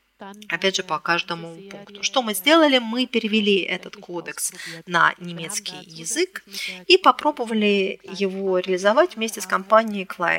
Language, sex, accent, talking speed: Russian, female, native, 125 wpm